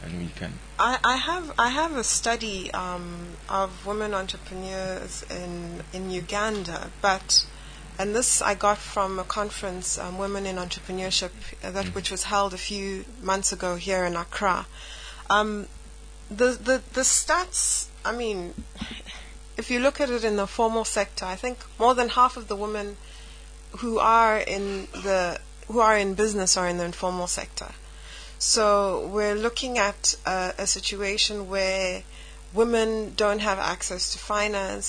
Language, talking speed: English, 155 wpm